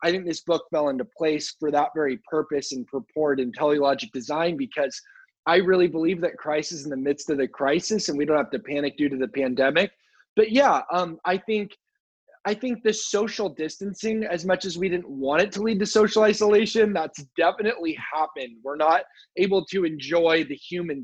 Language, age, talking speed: English, 20-39, 200 wpm